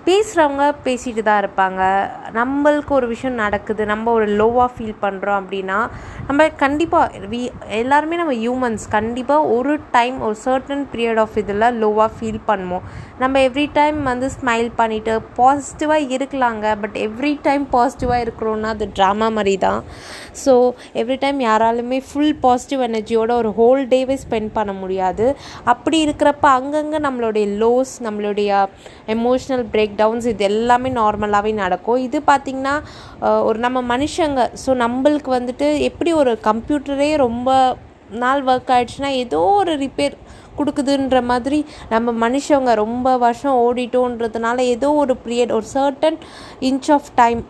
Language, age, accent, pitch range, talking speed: Tamil, 20-39, native, 220-275 Hz, 135 wpm